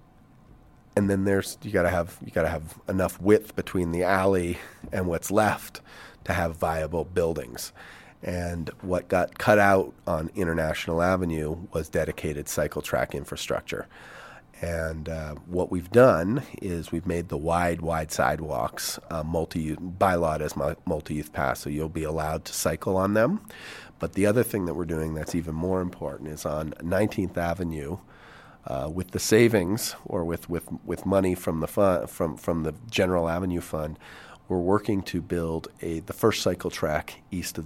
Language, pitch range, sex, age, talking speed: English, 80-95 Hz, male, 40-59, 165 wpm